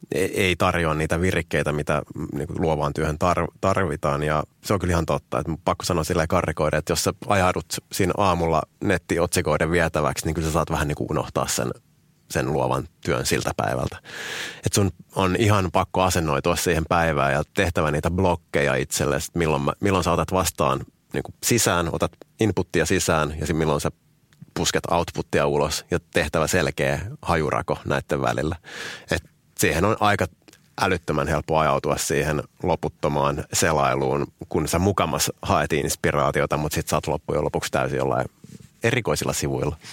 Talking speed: 150 wpm